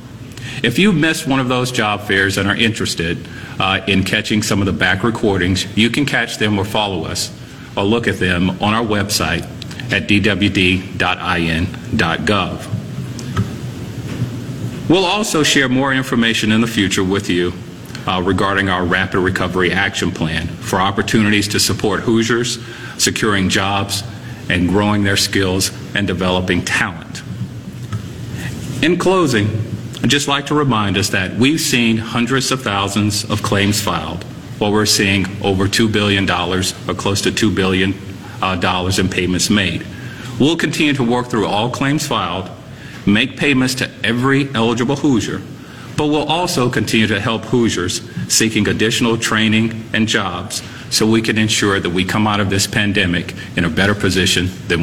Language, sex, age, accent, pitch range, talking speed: English, male, 40-59, American, 95-120 Hz, 155 wpm